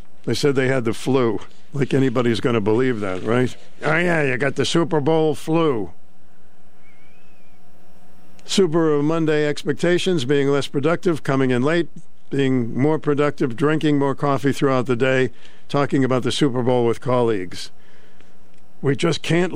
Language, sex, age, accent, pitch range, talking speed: English, male, 50-69, American, 135-160 Hz, 155 wpm